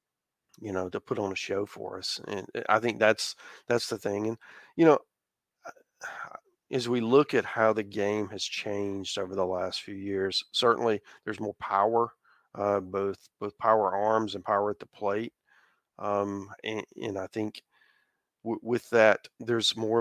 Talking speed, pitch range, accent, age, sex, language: 170 wpm, 100-115 Hz, American, 40-59, male, English